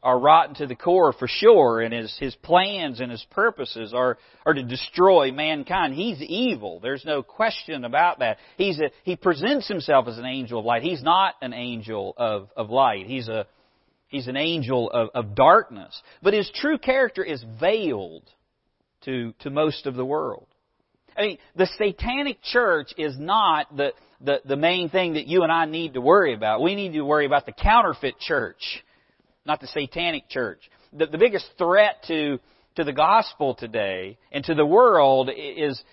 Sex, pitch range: male, 130-190 Hz